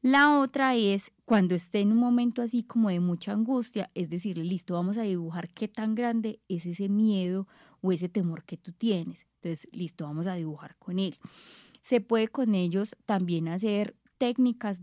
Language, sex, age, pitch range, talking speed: Spanish, female, 20-39, 175-225 Hz, 180 wpm